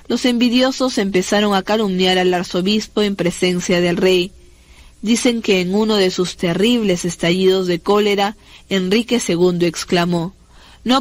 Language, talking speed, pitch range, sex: Spanish, 135 wpm, 185-225 Hz, female